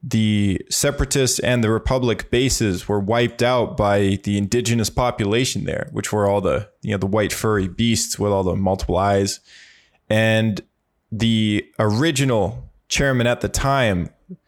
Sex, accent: male, American